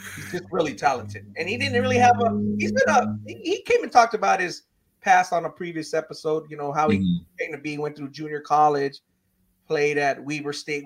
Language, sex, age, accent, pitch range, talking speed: English, male, 30-49, American, 150-210 Hz, 215 wpm